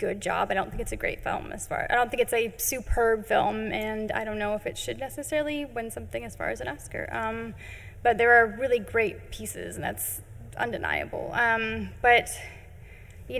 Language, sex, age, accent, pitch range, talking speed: English, female, 10-29, American, 215-290 Hz, 205 wpm